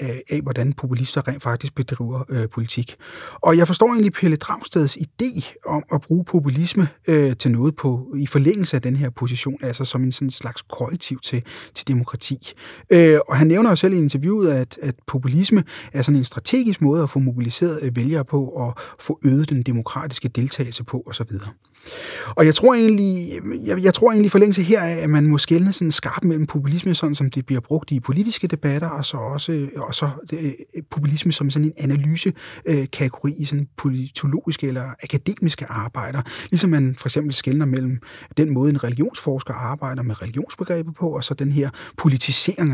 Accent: native